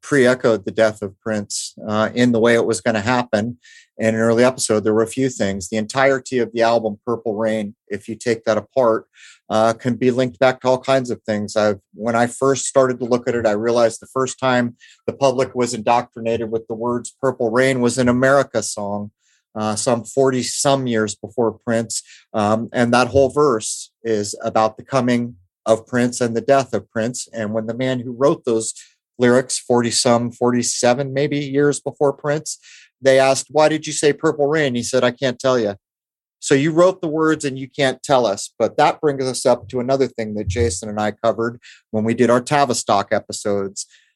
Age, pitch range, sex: 30-49, 110-135 Hz, male